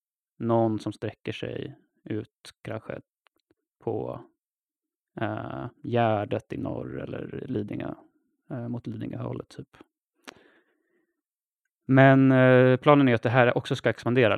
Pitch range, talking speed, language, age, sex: 110-160 Hz, 115 wpm, Swedish, 20-39, male